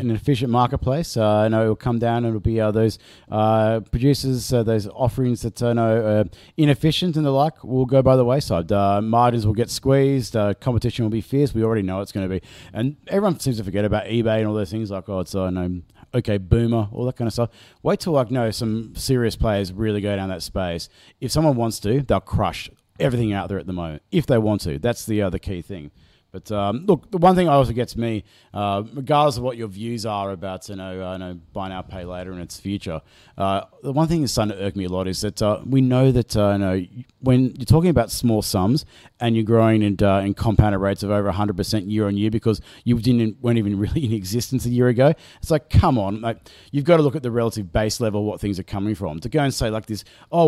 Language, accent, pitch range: English, Australian, 100-130 Hz